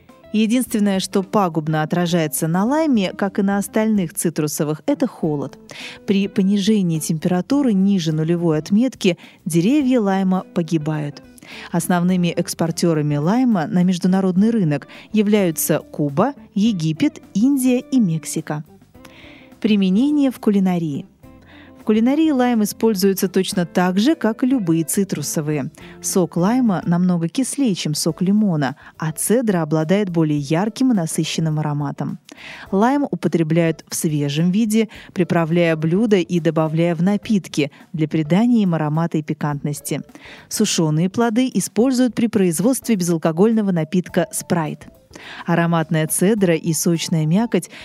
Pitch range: 165-220 Hz